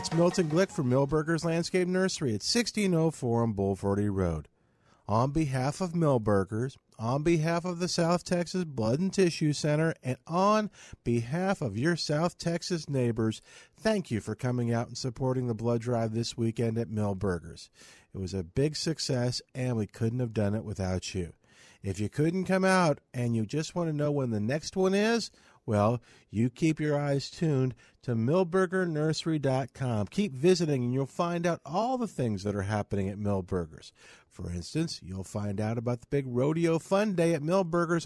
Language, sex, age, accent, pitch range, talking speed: English, male, 50-69, American, 115-170 Hz, 175 wpm